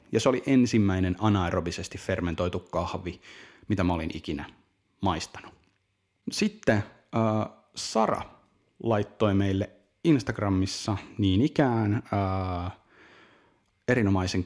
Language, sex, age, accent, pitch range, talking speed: Finnish, male, 30-49, native, 90-115 Hz, 90 wpm